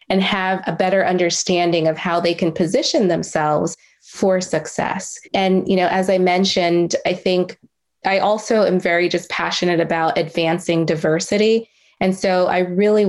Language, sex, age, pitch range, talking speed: English, female, 20-39, 170-195 Hz, 155 wpm